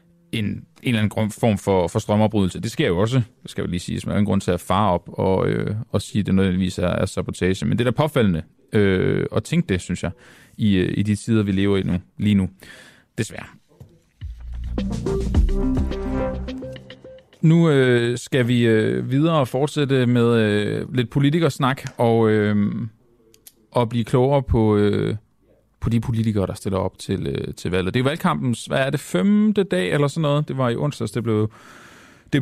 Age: 30-49